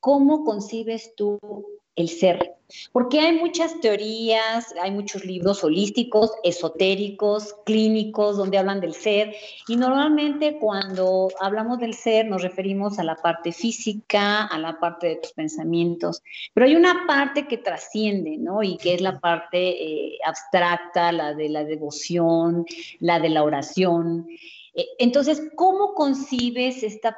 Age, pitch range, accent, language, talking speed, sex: 40-59, 185-260 Hz, Mexican, Spanish, 140 wpm, female